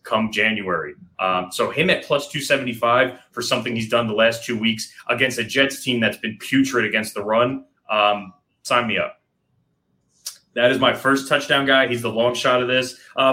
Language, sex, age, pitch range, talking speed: English, male, 20-39, 110-130 Hz, 195 wpm